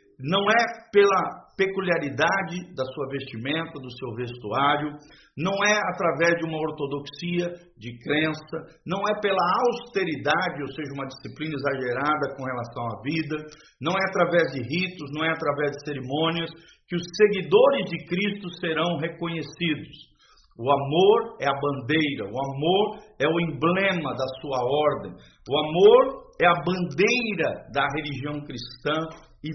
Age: 50-69